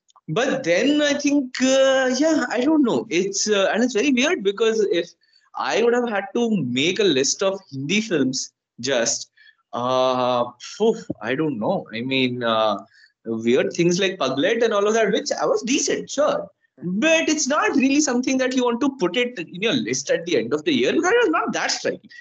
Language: English